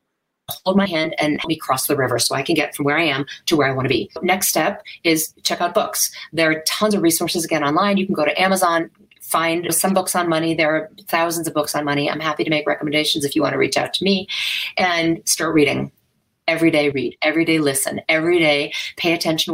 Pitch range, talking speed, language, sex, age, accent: 160-205 Hz, 245 wpm, English, female, 40-59, American